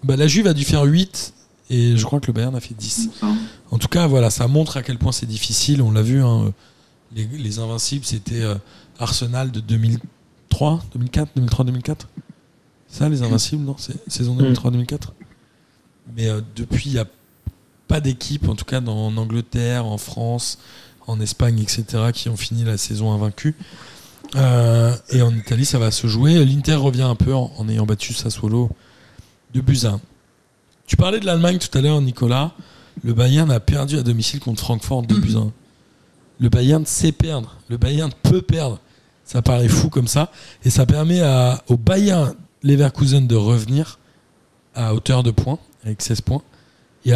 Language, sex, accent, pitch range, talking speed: French, male, French, 115-140 Hz, 175 wpm